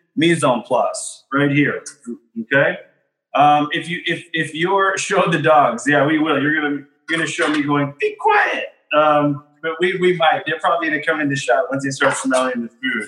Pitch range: 140-180 Hz